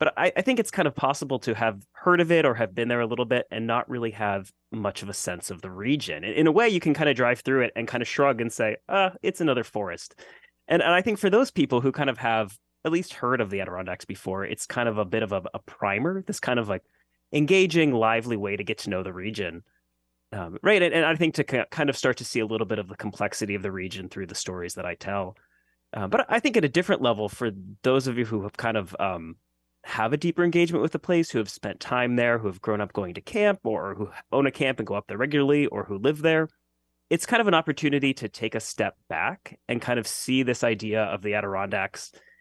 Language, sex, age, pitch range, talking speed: English, male, 20-39, 100-145 Hz, 265 wpm